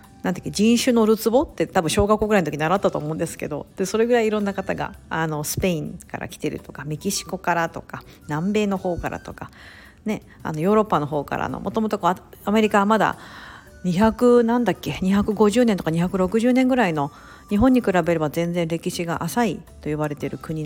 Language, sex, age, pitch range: Japanese, female, 50-69, 160-220 Hz